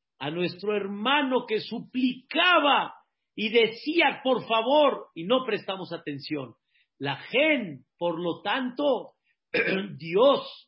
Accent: Mexican